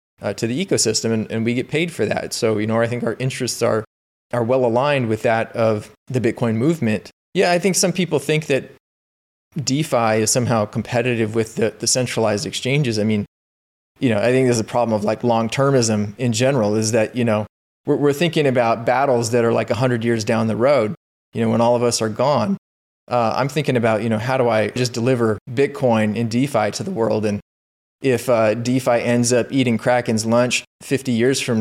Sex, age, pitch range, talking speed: male, 30-49, 110-140 Hz, 215 wpm